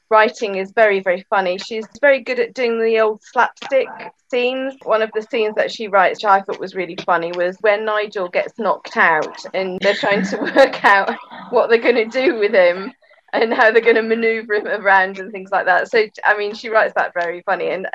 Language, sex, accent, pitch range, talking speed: English, female, British, 185-230 Hz, 225 wpm